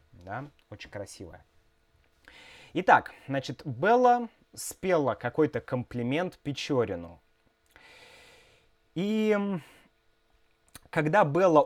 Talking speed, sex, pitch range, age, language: 65 wpm, male, 120-175 Hz, 20-39, Russian